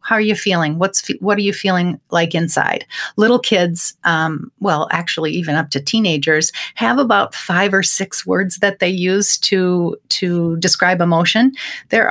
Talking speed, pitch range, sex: 170 wpm, 160-195 Hz, female